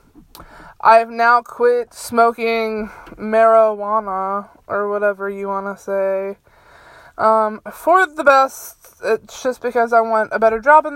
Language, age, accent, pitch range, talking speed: English, 20-39, American, 220-275 Hz, 125 wpm